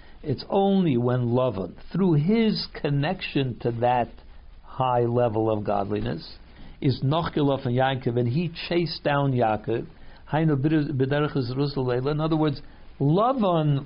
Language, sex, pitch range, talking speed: English, male, 115-150 Hz, 115 wpm